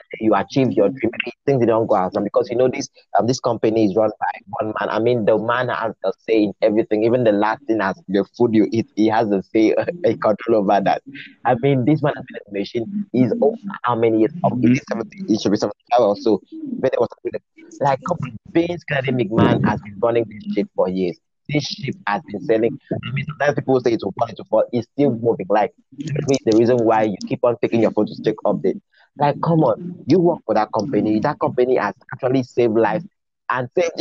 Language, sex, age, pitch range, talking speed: English, male, 30-49, 110-150 Hz, 225 wpm